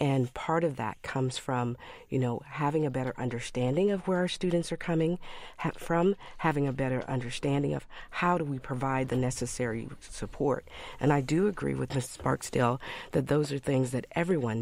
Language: English